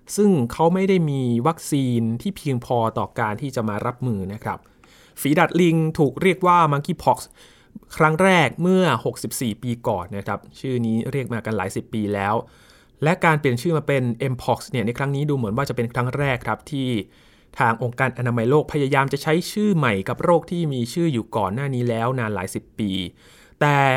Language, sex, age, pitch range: Thai, male, 20-39, 115-150 Hz